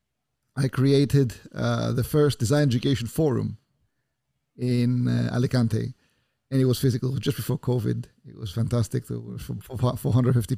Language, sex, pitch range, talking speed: English, male, 120-140 Hz, 135 wpm